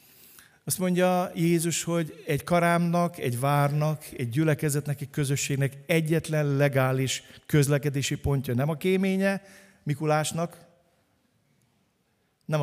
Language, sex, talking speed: Hungarian, male, 100 wpm